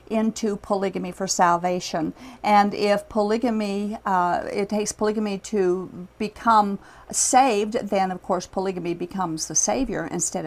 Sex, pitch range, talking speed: female, 195-235 Hz, 125 wpm